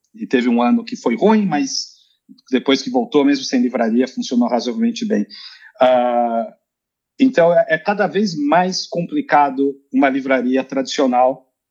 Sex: male